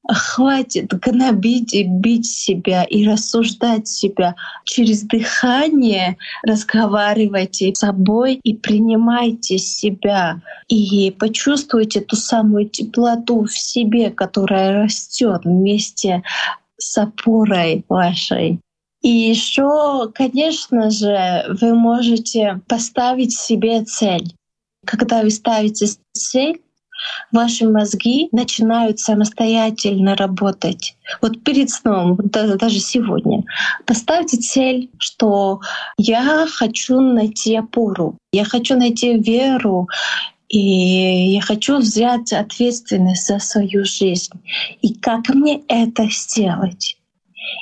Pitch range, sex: 205-240 Hz, female